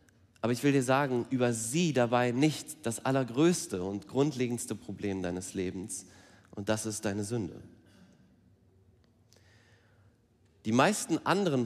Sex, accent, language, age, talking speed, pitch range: male, German, German, 30-49, 125 wpm, 100-125 Hz